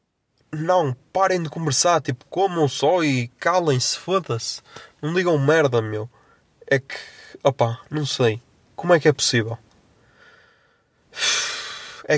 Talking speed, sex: 125 wpm, male